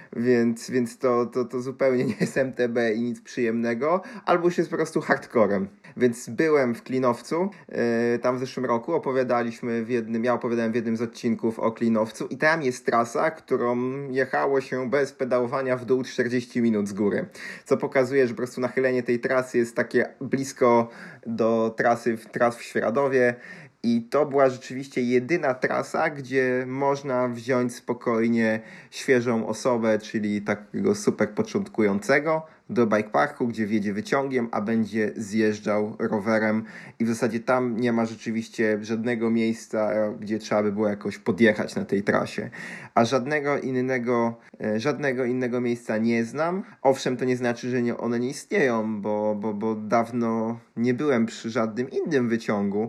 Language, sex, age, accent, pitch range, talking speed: Polish, male, 20-39, native, 115-130 Hz, 160 wpm